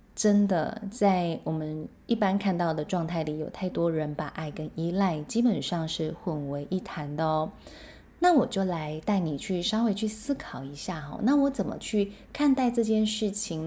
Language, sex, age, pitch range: Chinese, female, 20-39, 160-215 Hz